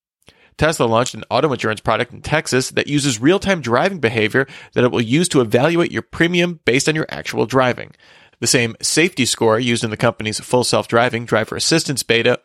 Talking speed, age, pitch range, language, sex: 190 wpm, 30-49, 110-145 Hz, English, male